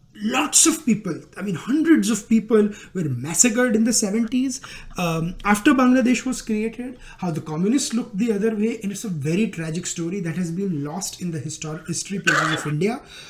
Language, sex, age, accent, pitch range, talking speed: English, male, 20-39, Indian, 160-210 Hz, 185 wpm